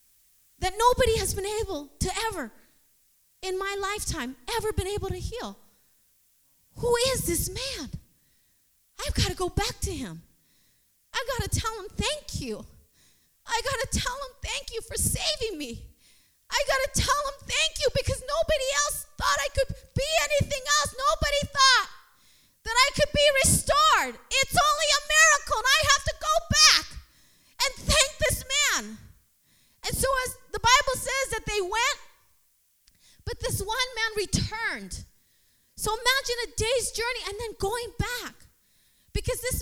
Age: 30-49